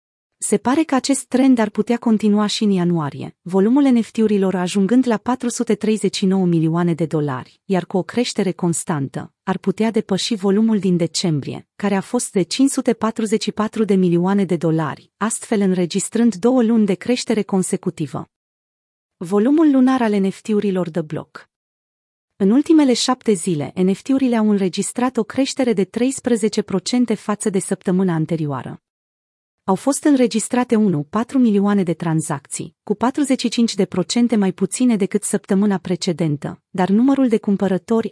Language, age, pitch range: Romanian, 30-49, 180-230 Hz